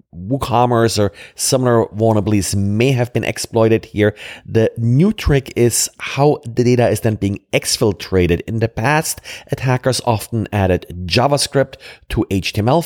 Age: 40-59